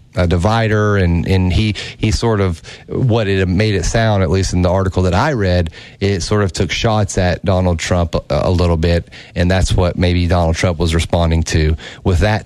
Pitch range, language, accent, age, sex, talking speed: 90-110 Hz, English, American, 30-49, male, 210 wpm